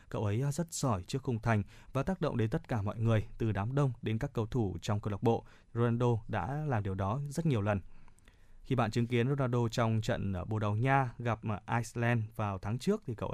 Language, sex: Vietnamese, male